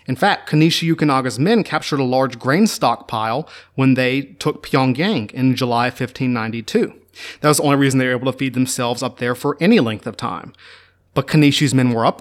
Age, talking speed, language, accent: 30-49, 195 wpm, English, American